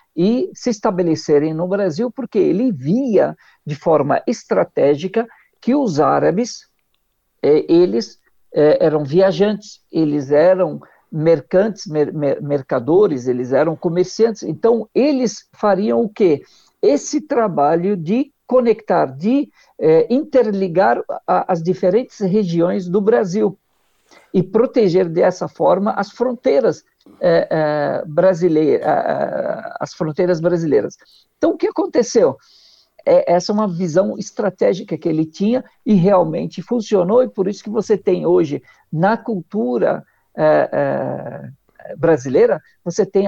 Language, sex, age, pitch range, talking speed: Portuguese, male, 60-79, 175-230 Hz, 105 wpm